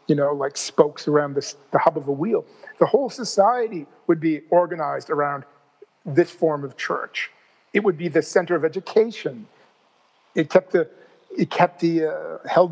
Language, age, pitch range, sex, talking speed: English, 50-69, 160-195 Hz, male, 175 wpm